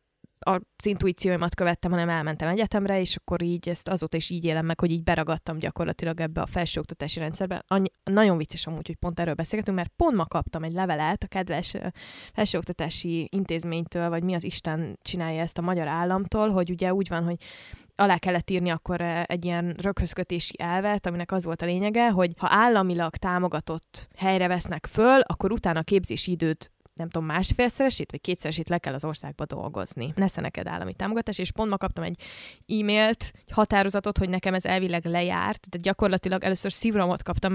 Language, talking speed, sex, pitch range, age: Hungarian, 175 wpm, female, 170-205 Hz, 20-39